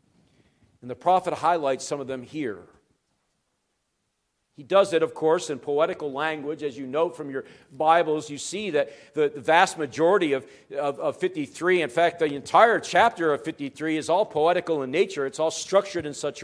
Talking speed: 185 wpm